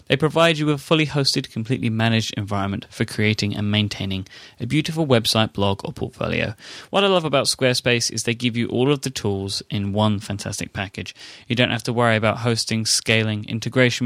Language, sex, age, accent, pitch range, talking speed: English, male, 20-39, British, 105-130 Hz, 195 wpm